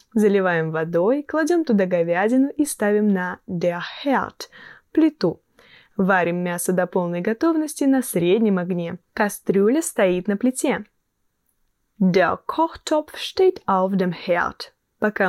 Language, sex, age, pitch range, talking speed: Russian, female, 10-29, 190-280 Hz, 90 wpm